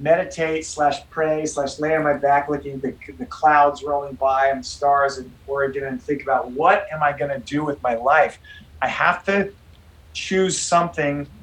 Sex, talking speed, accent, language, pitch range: male, 185 wpm, American, English, 130-150 Hz